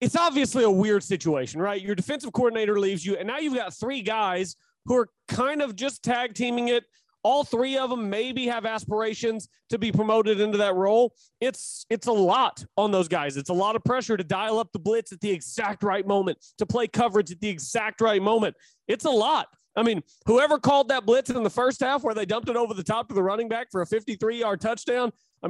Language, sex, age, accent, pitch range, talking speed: English, male, 30-49, American, 195-245 Hz, 225 wpm